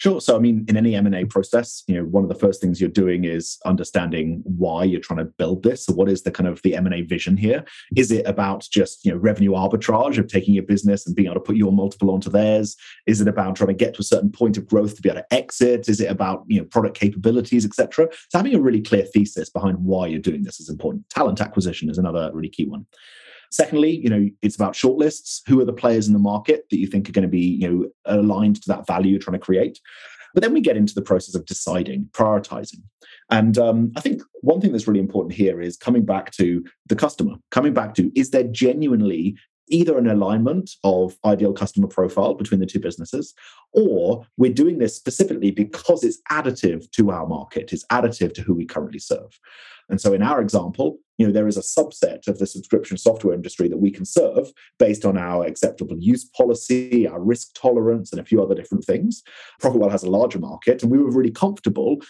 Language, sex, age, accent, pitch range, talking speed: English, male, 30-49, British, 95-125 Hz, 230 wpm